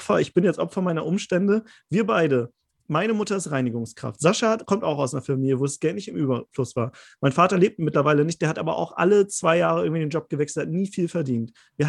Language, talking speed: German, 230 wpm